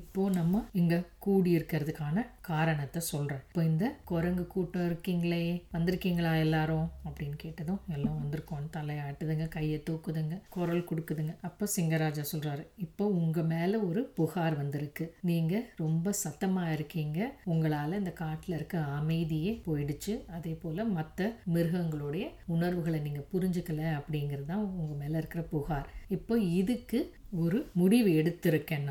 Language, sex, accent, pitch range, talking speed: Tamil, female, native, 155-185 Hz, 85 wpm